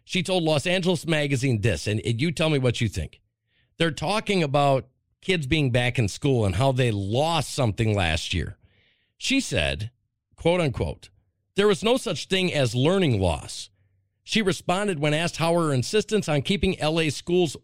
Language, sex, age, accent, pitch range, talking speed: English, male, 50-69, American, 120-185 Hz, 175 wpm